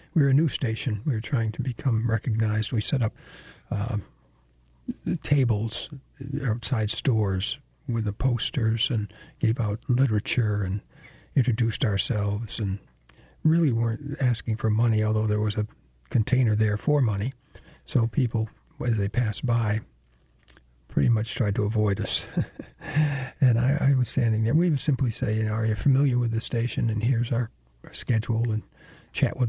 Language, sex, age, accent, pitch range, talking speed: English, male, 60-79, American, 110-135 Hz, 165 wpm